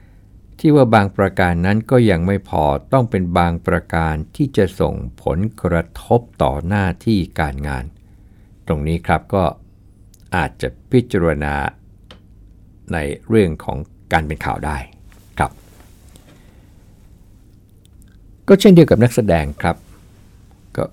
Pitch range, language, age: 85-100 Hz, Thai, 60-79